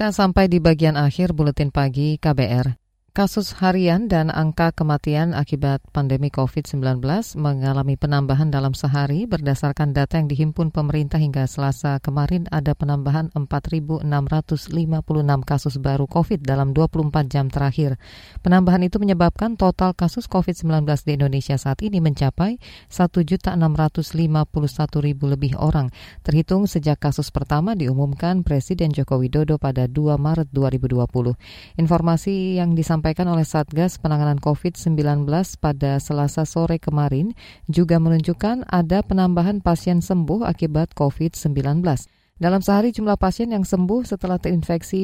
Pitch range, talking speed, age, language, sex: 145-175 Hz, 120 wpm, 20-39, Indonesian, female